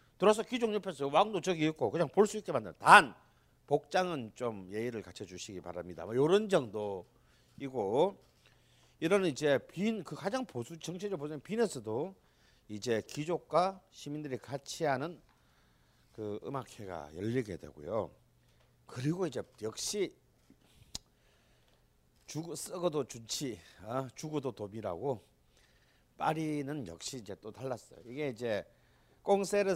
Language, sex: Korean, male